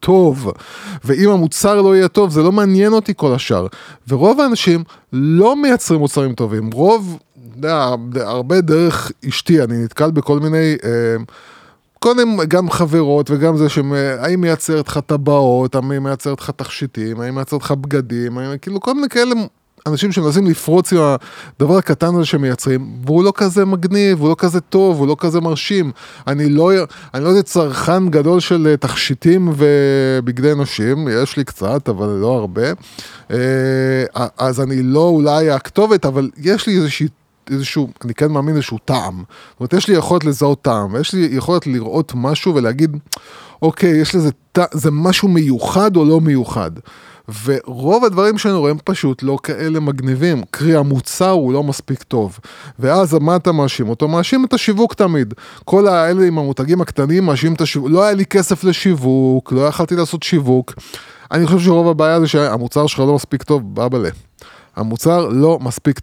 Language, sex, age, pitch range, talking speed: Hebrew, male, 20-39, 135-180 Hz, 160 wpm